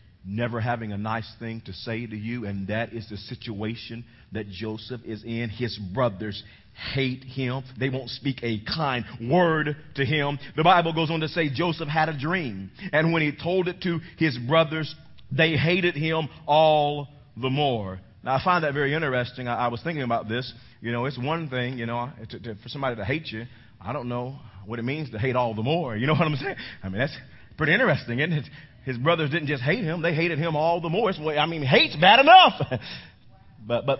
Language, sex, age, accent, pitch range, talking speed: English, male, 40-59, American, 110-155 Hz, 215 wpm